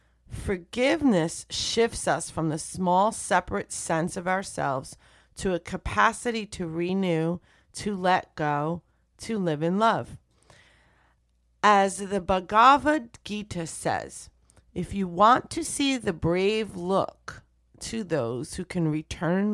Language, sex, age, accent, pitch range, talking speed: English, female, 30-49, American, 160-200 Hz, 125 wpm